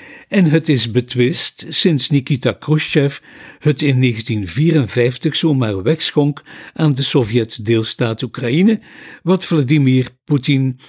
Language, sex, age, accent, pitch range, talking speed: Dutch, male, 50-69, Dutch, 120-155 Hz, 110 wpm